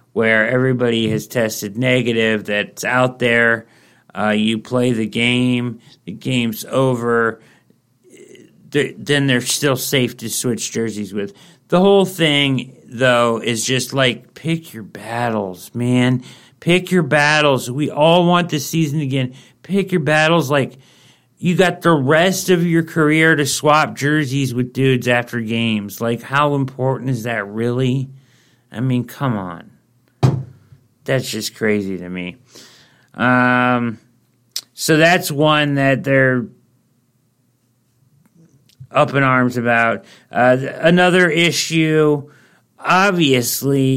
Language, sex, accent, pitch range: English, male, American, 120-150 Hz